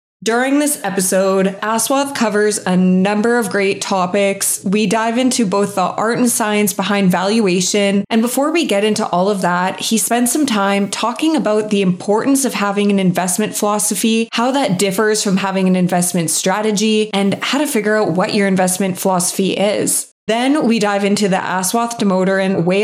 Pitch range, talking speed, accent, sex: 190-225 Hz, 175 wpm, American, female